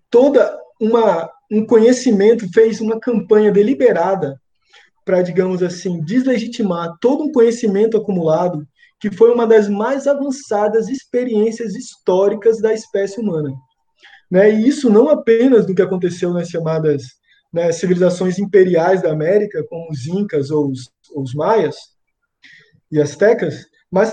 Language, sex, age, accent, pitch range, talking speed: Portuguese, male, 20-39, Brazilian, 180-230 Hz, 130 wpm